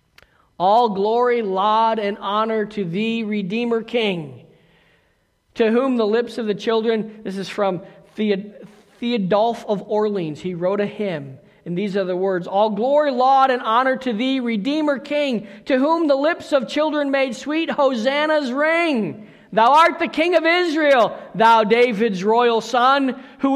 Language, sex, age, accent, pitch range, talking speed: English, male, 50-69, American, 195-255 Hz, 155 wpm